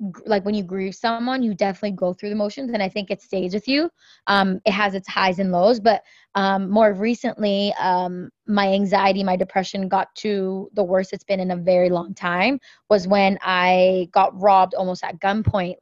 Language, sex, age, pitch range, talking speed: English, female, 20-39, 195-230 Hz, 200 wpm